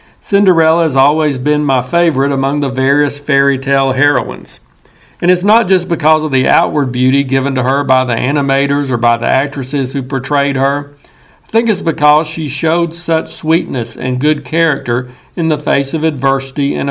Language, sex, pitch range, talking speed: English, male, 135-165 Hz, 180 wpm